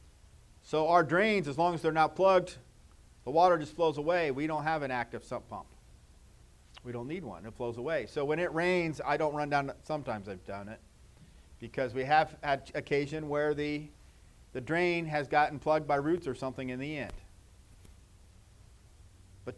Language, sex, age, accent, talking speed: English, male, 50-69, American, 185 wpm